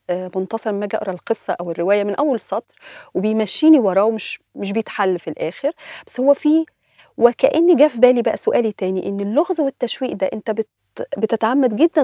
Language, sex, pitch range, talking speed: Arabic, female, 195-280 Hz, 175 wpm